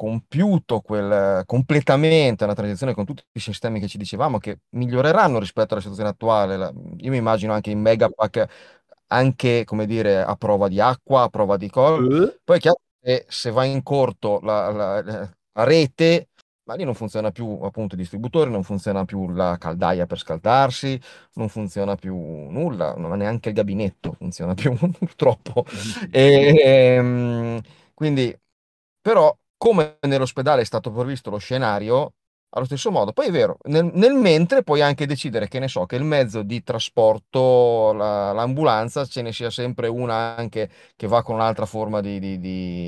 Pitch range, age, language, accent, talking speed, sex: 105-135 Hz, 30-49, Italian, native, 165 wpm, male